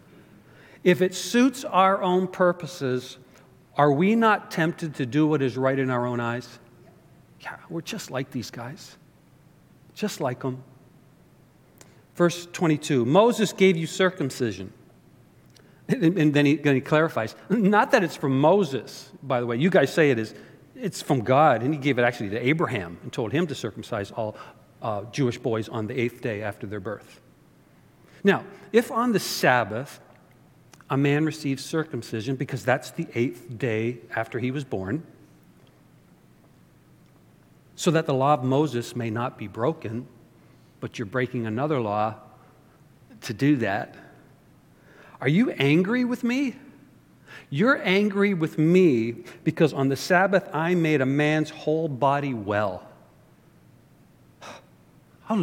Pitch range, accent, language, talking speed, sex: 125-175 Hz, American, English, 145 wpm, male